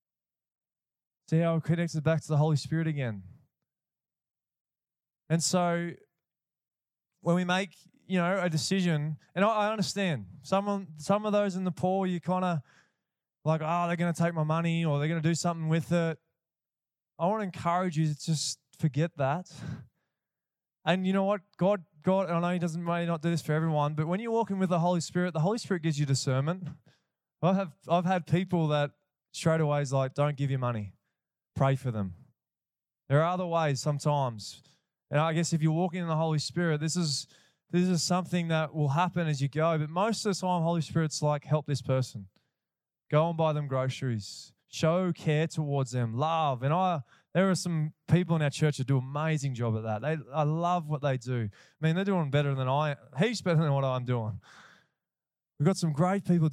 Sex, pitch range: male, 145-175 Hz